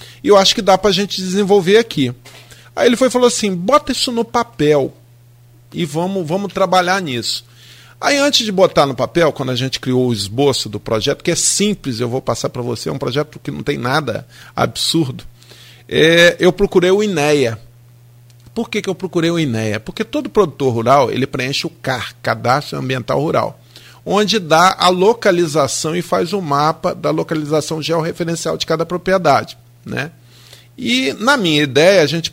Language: Portuguese